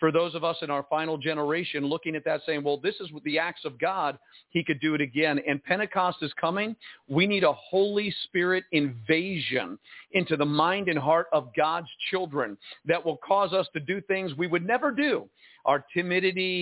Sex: male